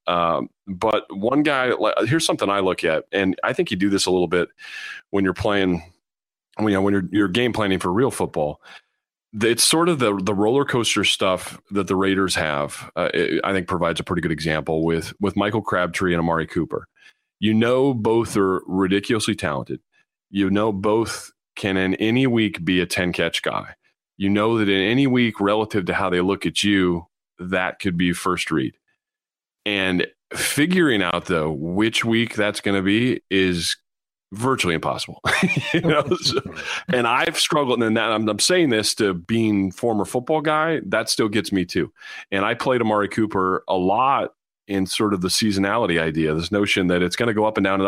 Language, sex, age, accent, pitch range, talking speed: English, male, 30-49, American, 95-115 Hz, 190 wpm